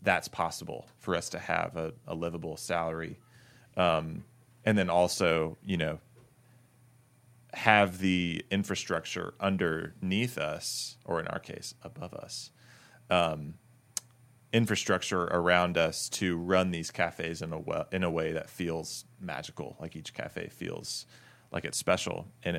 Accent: American